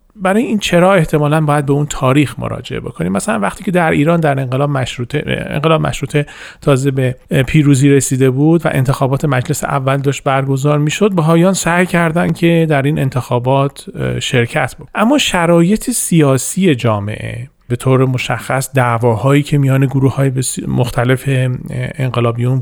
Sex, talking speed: male, 145 wpm